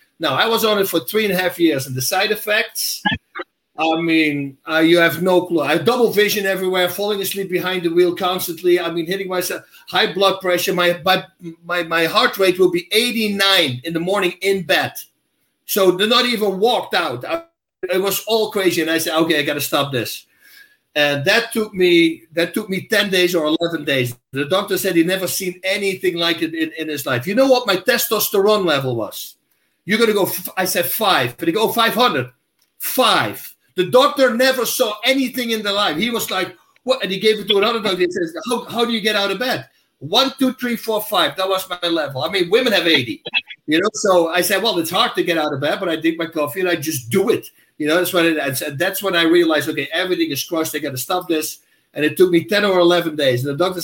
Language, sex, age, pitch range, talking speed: English, male, 50-69, 165-210 Hz, 240 wpm